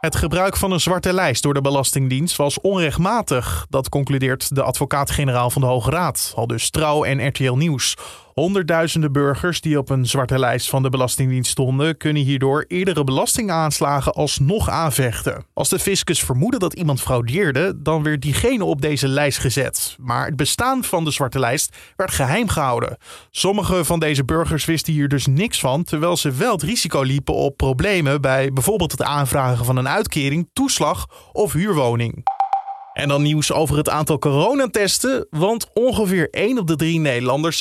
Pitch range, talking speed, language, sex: 135-180 Hz, 170 wpm, Dutch, male